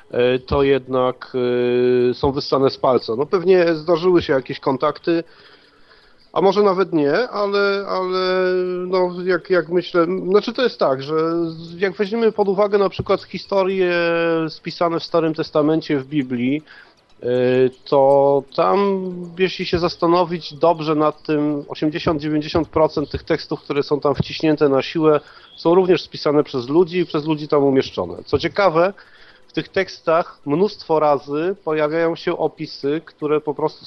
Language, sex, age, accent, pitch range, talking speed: Polish, male, 40-59, native, 140-180 Hz, 140 wpm